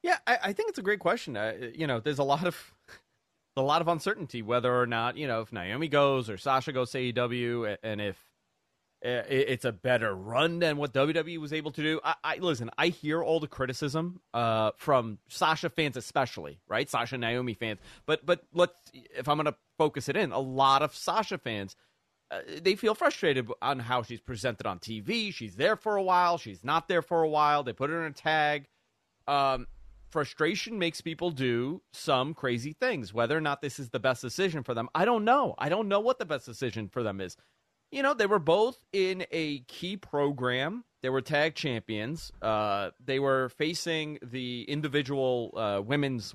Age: 30-49